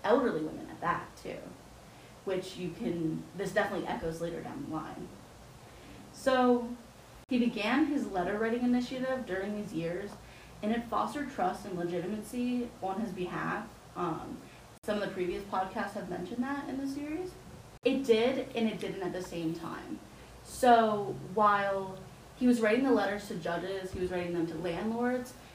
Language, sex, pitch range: English, female, 175-235 Hz